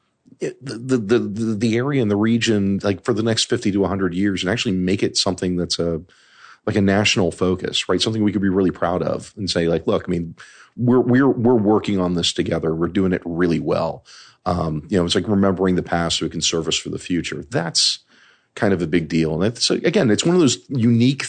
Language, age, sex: English, 40-59, male